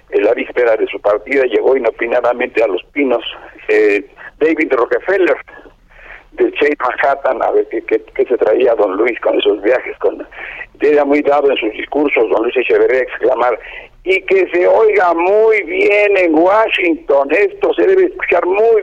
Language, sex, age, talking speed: Spanish, male, 60-79, 165 wpm